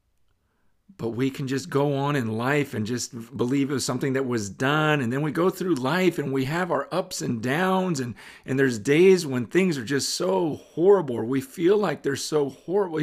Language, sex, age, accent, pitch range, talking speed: English, male, 40-59, American, 135-200 Hz, 215 wpm